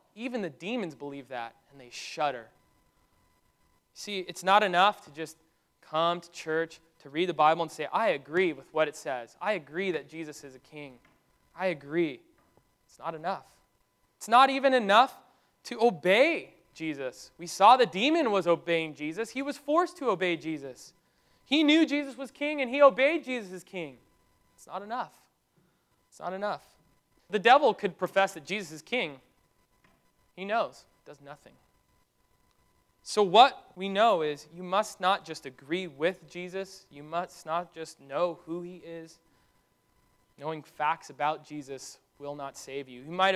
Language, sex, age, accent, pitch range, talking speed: English, male, 20-39, American, 155-240 Hz, 165 wpm